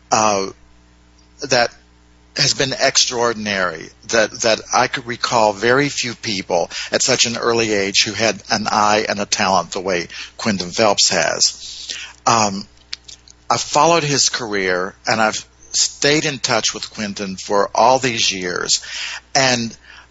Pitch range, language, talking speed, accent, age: 95-115 Hz, English, 140 wpm, American, 50-69